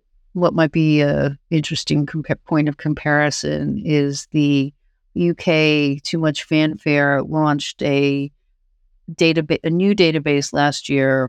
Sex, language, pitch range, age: female, English, 140-160 Hz, 50-69